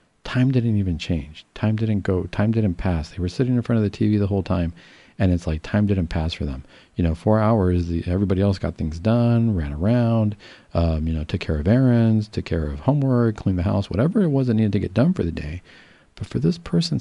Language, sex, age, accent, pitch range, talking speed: English, male, 40-59, American, 90-120 Hz, 245 wpm